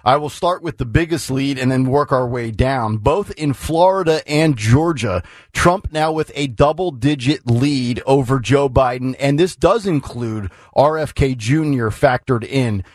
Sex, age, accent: male, 40-59, American